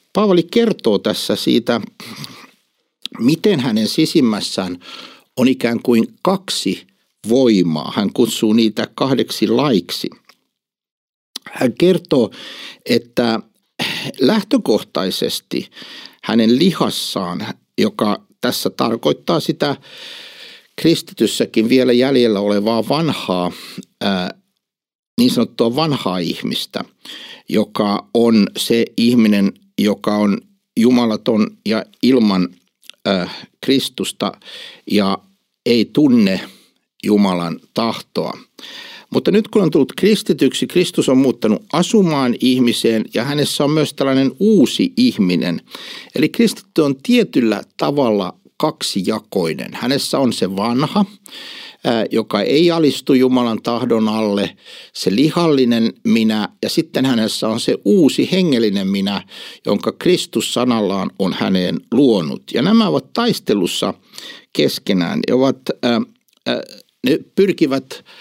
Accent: native